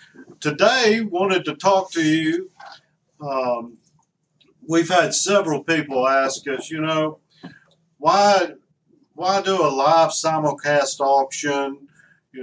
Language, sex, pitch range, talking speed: English, male, 135-165 Hz, 110 wpm